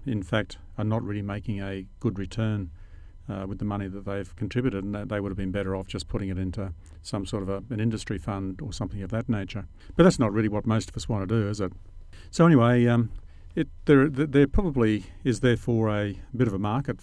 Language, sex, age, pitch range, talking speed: English, male, 50-69, 95-125 Hz, 235 wpm